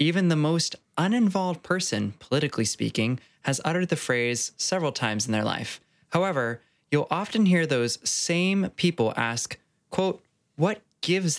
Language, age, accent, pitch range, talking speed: English, 20-39, American, 120-165 Hz, 140 wpm